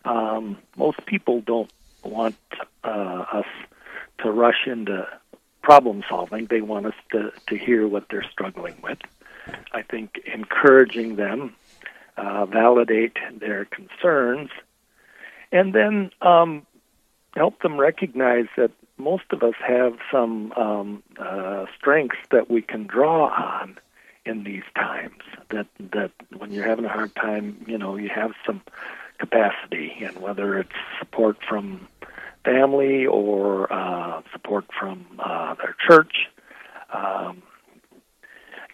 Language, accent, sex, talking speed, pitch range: English, American, male, 125 wpm, 105-125 Hz